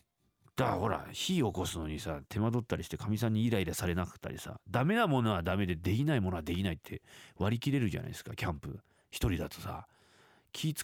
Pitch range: 90-135 Hz